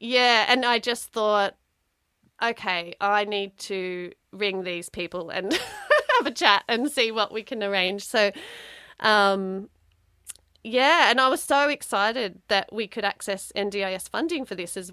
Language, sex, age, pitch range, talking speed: English, female, 30-49, 180-225 Hz, 155 wpm